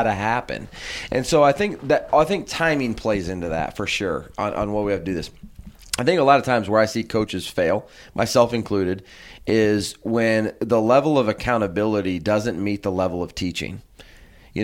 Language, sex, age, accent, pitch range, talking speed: English, male, 30-49, American, 105-125 Hz, 200 wpm